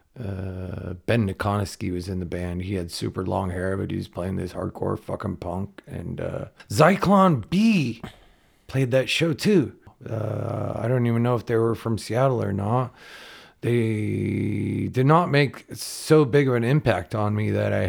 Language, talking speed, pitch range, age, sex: English, 180 wpm, 105-140 Hz, 40-59, male